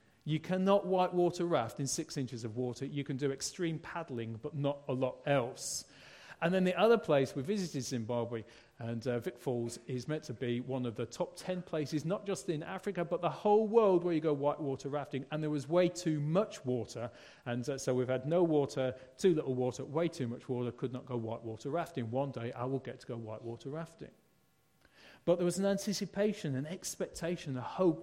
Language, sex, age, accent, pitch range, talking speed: English, male, 40-59, British, 130-180 Hz, 210 wpm